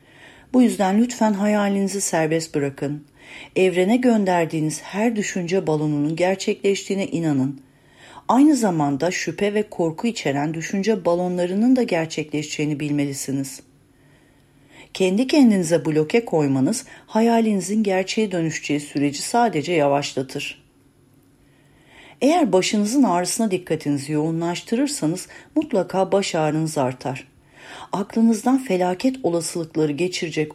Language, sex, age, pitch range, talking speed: Turkish, female, 40-59, 150-205 Hz, 90 wpm